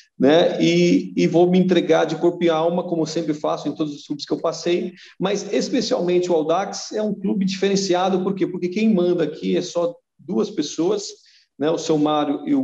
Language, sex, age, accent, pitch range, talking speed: Portuguese, male, 40-59, Brazilian, 145-185 Hz, 215 wpm